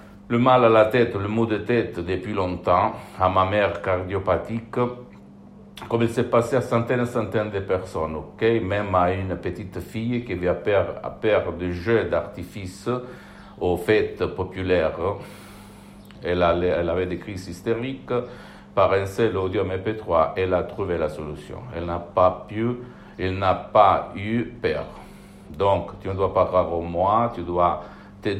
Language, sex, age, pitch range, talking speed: Italian, male, 60-79, 90-115 Hz, 165 wpm